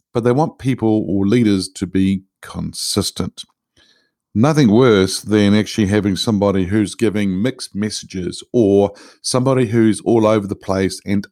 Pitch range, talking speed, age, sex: 100-120 Hz, 145 wpm, 50-69, male